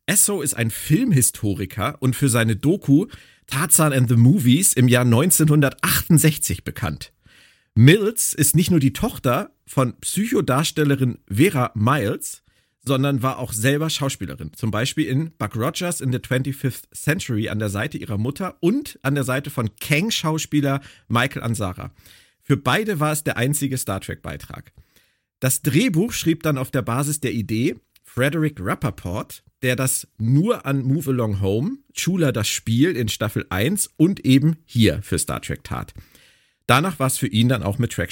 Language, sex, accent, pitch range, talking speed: German, male, German, 110-155 Hz, 155 wpm